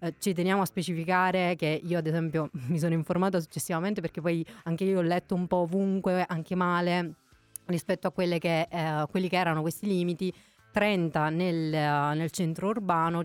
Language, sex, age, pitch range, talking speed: German, female, 30-49, 165-185 Hz, 165 wpm